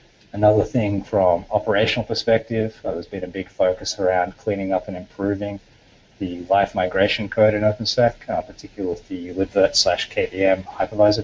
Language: English